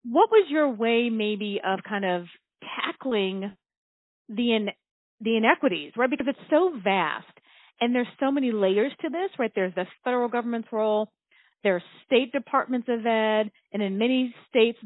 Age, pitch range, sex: 40-59, 205-255 Hz, female